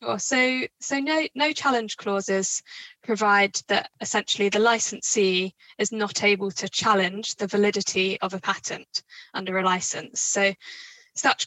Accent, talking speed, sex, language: British, 140 wpm, female, English